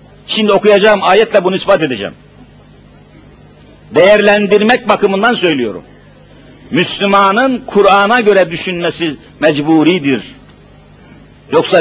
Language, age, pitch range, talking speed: Turkish, 60-79, 180-225 Hz, 75 wpm